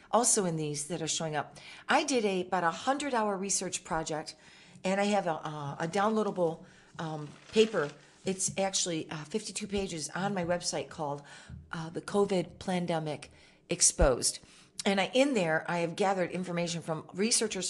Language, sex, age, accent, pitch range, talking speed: English, female, 40-59, American, 165-205 Hz, 165 wpm